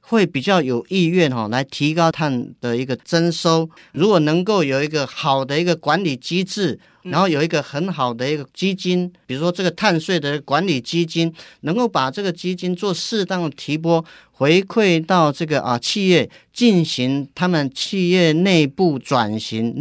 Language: Chinese